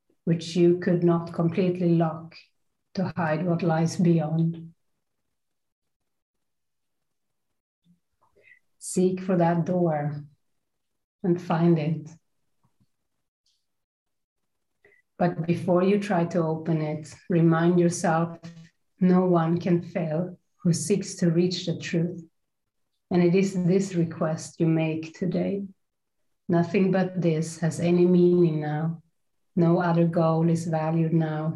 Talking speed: 110 wpm